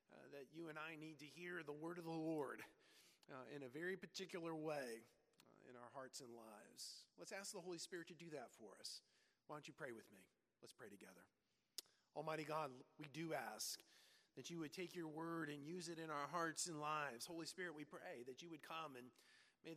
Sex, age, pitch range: male, 30-49, 140-175 Hz